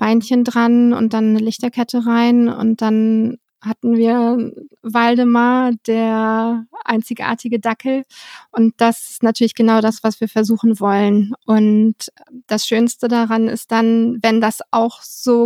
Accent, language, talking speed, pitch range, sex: German, German, 135 wpm, 225-245 Hz, female